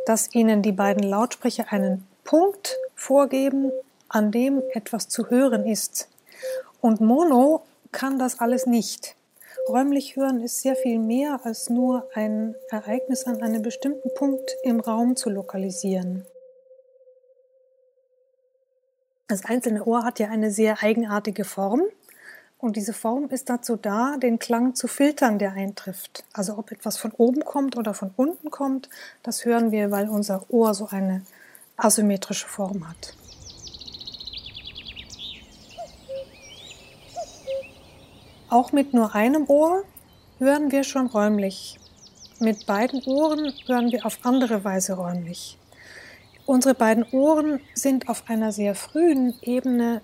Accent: German